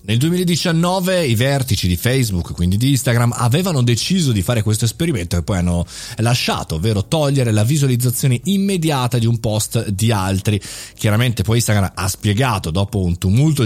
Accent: native